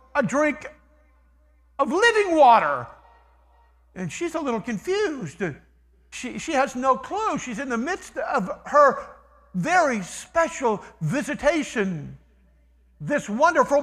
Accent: American